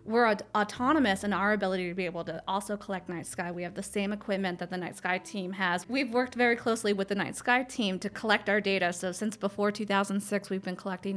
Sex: female